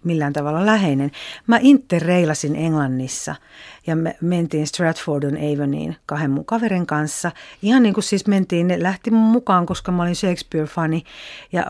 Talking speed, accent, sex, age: 145 wpm, native, female, 50-69